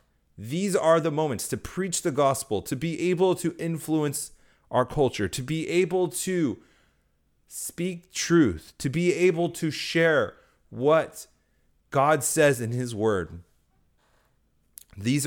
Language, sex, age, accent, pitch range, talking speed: English, male, 30-49, American, 105-165 Hz, 130 wpm